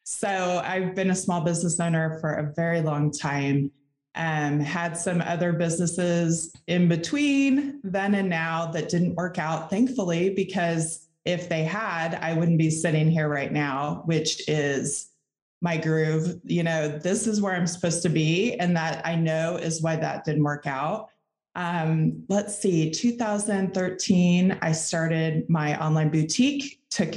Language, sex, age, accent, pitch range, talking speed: English, female, 20-39, American, 160-195 Hz, 155 wpm